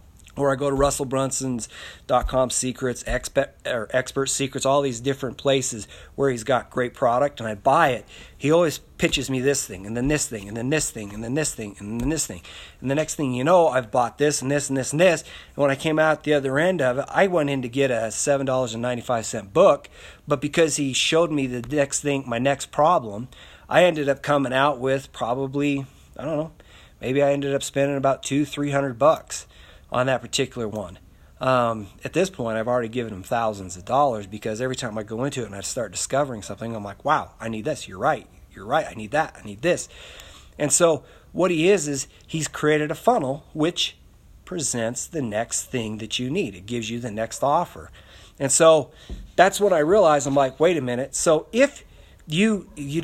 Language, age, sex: English, 40-59, male